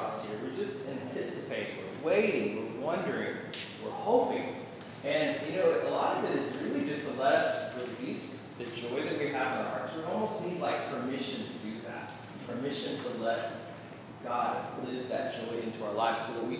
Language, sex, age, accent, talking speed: English, male, 20-39, American, 190 wpm